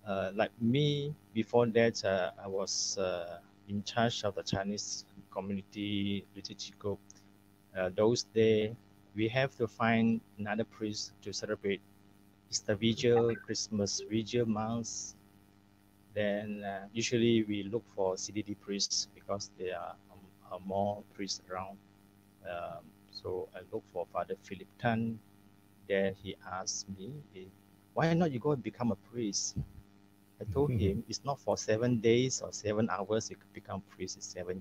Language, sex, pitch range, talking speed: English, male, 100-115 Hz, 145 wpm